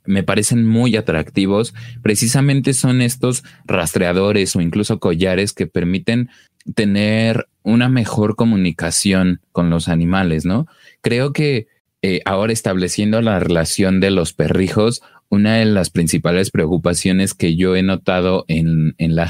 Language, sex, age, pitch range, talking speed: Spanish, male, 30-49, 90-110 Hz, 135 wpm